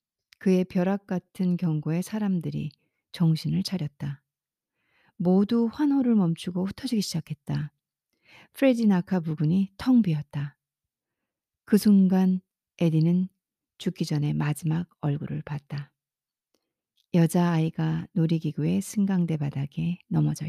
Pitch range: 155-200 Hz